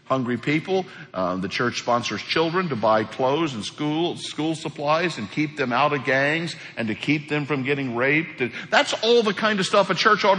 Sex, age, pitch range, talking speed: male, 60-79, 130-180 Hz, 210 wpm